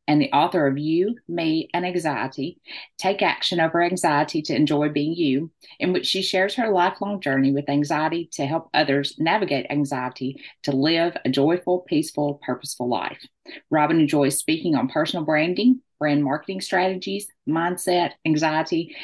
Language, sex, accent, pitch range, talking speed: English, female, American, 140-180 Hz, 150 wpm